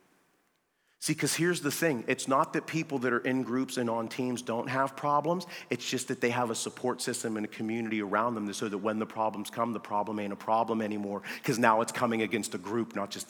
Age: 40-59